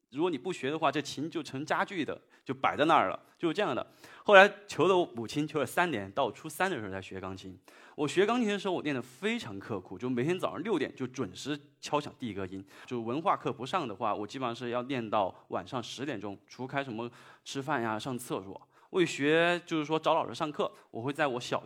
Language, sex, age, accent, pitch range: Chinese, male, 20-39, native, 115-175 Hz